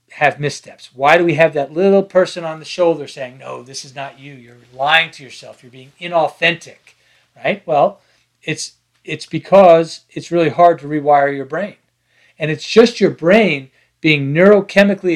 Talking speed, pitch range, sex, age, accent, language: 175 wpm, 145-190 Hz, male, 40-59, American, English